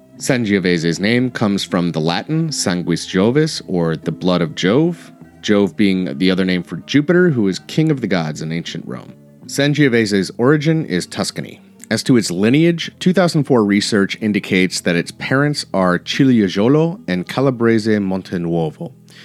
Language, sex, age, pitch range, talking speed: English, male, 30-49, 95-135 Hz, 150 wpm